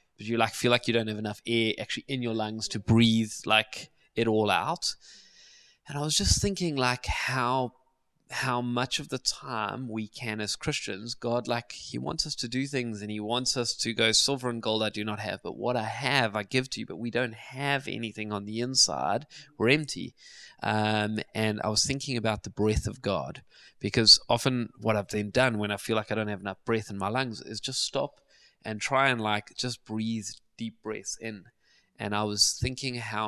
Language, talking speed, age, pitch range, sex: English, 215 wpm, 20-39, 105-125 Hz, male